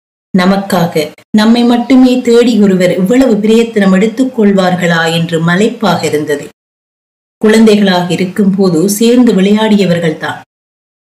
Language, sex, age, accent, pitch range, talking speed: Tamil, female, 30-49, native, 180-220 Hz, 85 wpm